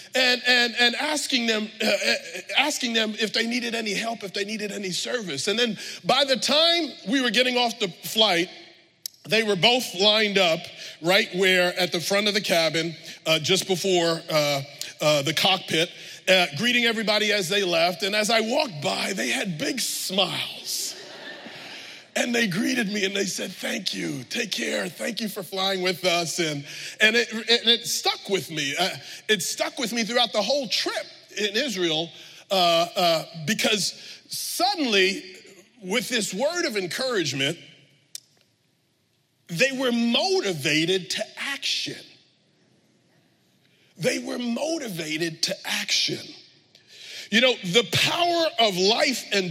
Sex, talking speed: male, 150 wpm